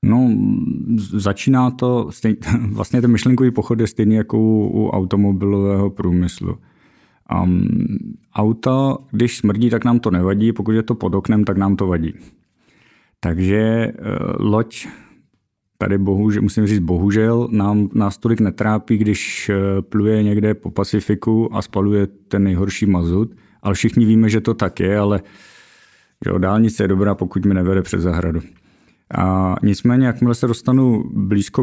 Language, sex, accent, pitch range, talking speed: Czech, male, native, 100-115 Hz, 150 wpm